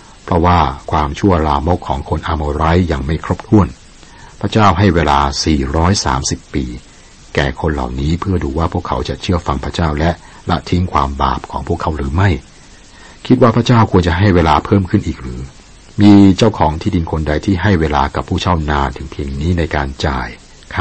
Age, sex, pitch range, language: 60-79, male, 75-95 Hz, Thai